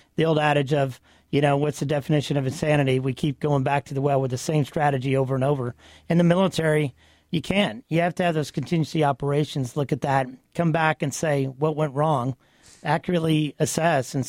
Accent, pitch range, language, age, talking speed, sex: American, 140-165 Hz, English, 40-59, 210 wpm, male